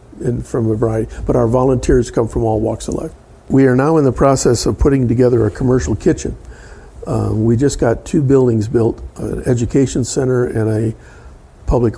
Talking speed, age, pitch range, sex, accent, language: 190 wpm, 50-69, 115-135 Hz, male, American, English